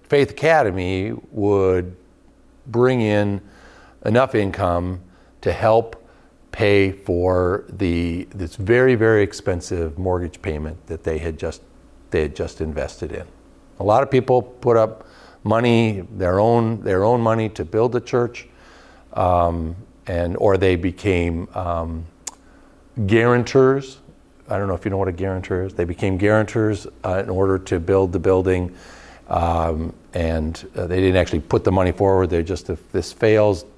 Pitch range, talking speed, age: 85-105 Hz, 150 wpm, 50-69